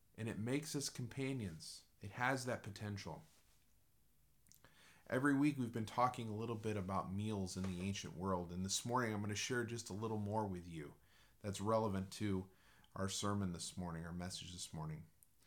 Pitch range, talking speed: 100-130 Hz, 180 wpm